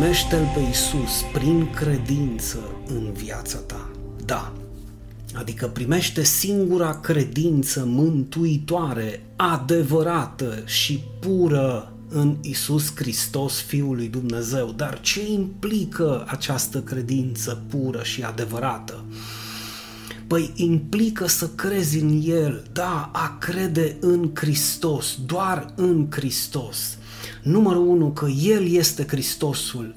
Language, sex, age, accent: Romanian, male, 30-49, native